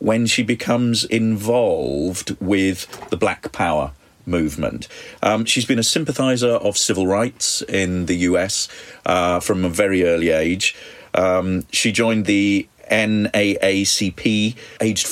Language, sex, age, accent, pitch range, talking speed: English, male, 40-59, British, 95-115 Hz, 125 wpm